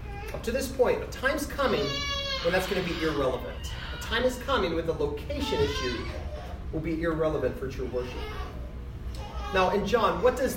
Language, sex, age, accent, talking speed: English, male, 30-49, American, 180 wpm